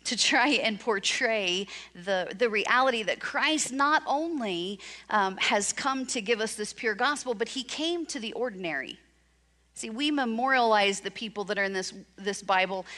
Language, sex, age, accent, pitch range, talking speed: English, female, 40-59, American, 205-275 Hz, 170 wpm